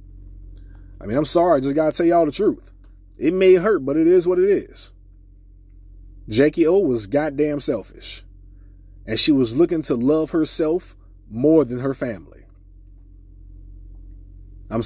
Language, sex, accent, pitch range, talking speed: English, male, American, 95-150 Hz, 155 wpm